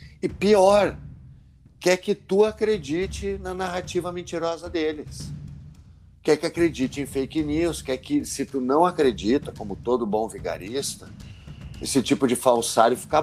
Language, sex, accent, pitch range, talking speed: Portuguese, male, Brazilian, 100-140 Hz, 140 wpm